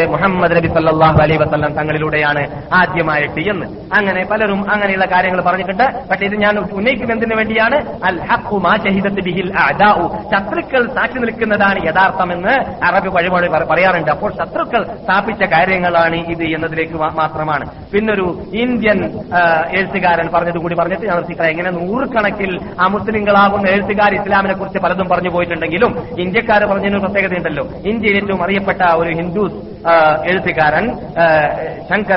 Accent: native